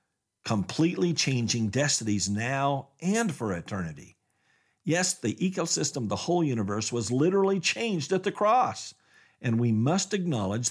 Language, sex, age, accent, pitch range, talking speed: English, male, 50-69, American, 115-190 Hz, 130 wpm